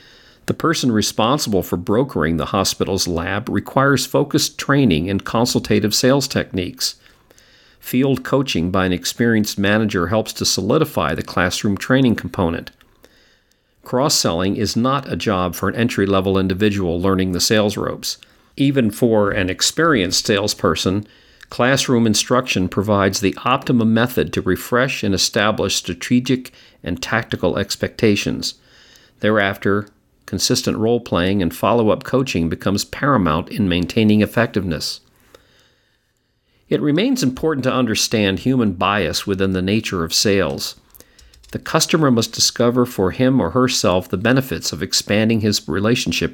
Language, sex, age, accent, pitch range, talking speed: English, male, 50-69, American, 95-125 Hz, 125 wpm